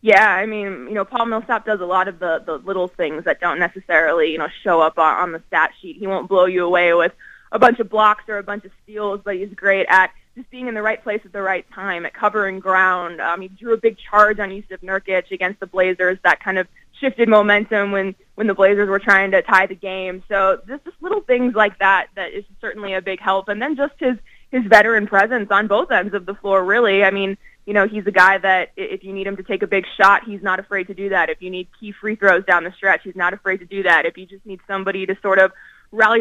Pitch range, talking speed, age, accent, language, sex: 185-210 Hz, 265 wpm, 20-39, American, English, female